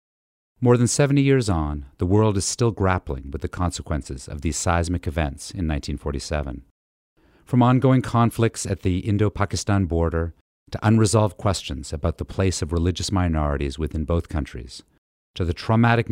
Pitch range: 75-105 Hz